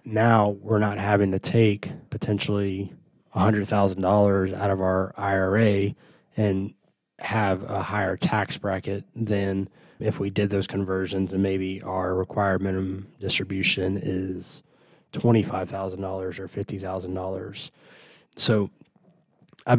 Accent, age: American, 20-39